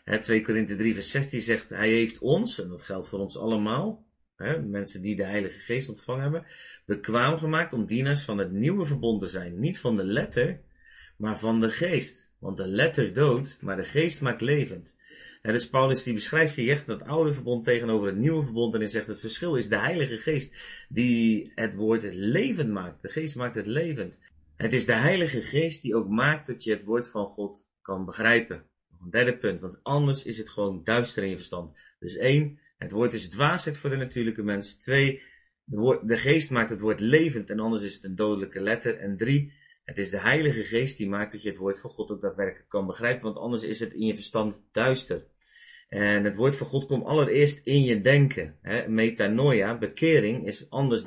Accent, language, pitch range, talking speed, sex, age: Dutch, Dutch, 105-135 Hz, 210 wpm, male, 30-49